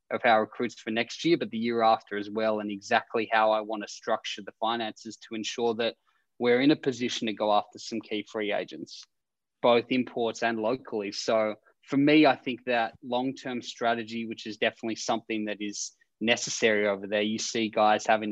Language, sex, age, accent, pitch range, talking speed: English, male, 20-39, Australian, 105-120 Hz, 195 wpm